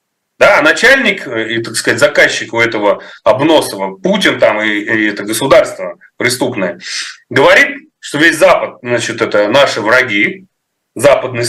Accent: native